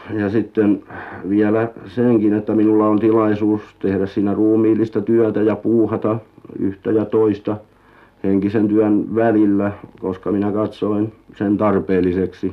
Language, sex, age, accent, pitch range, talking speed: Finnish, male, 60-79, native, 95-110 Hz, 120 wpm